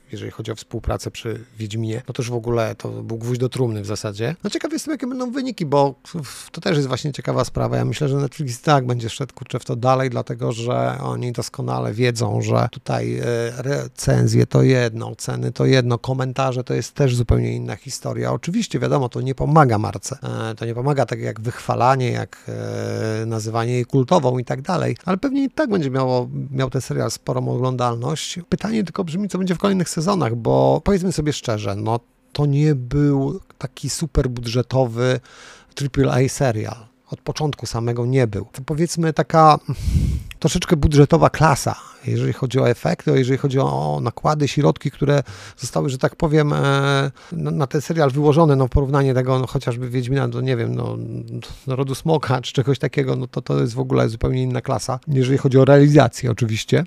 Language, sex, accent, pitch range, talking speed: Polish, male, native, 115-145 Hz, 185 wpm